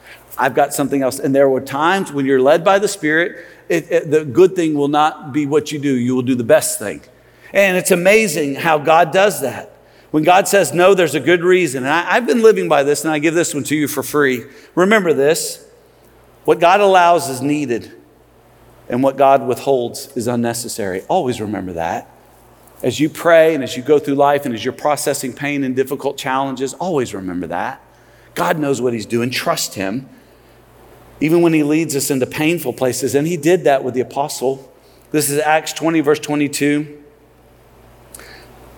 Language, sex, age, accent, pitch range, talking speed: English, male, 40-59, American, 135-165 Hz, 190 wpm